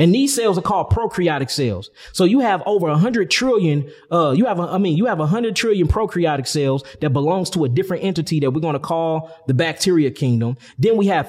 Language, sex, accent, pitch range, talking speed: English, male, American, 140-195 Hz, 225 wpm